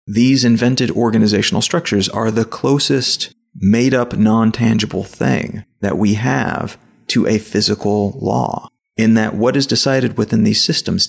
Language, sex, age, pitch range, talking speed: English, male, 30-49, 105-125 Hz, 135 wpm